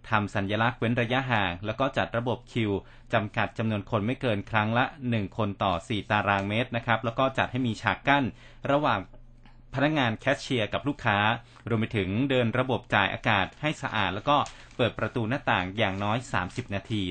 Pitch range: 105-130 Hz